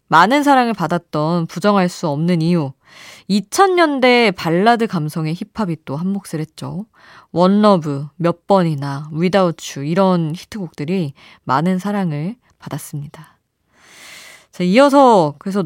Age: 20-39